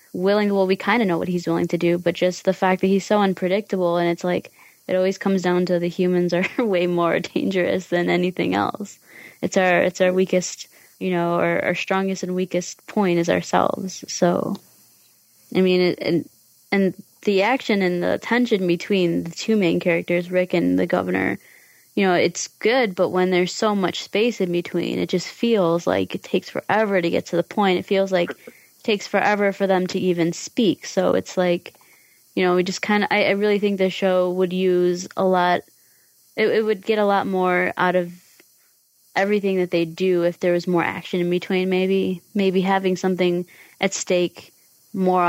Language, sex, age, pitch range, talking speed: English, female, 20-39, 175-190 Hz, 200 wpm